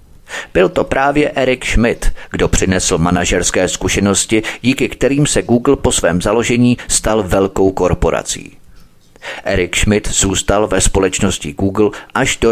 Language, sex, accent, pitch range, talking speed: Czech, male, native, 90-115 Hz, 130 wpm